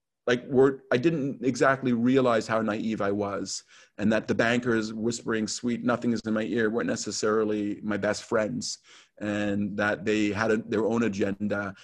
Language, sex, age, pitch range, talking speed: English, male, 40-59, 105-120 Hz, 160 wpm